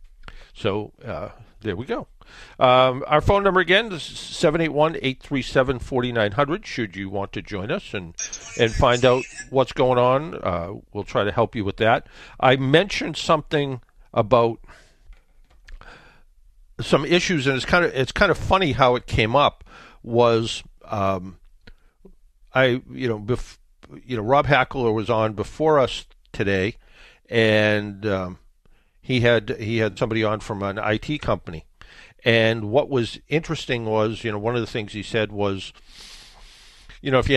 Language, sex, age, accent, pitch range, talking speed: English, male, 50-69, American, 105-130 Hz, 155 wpm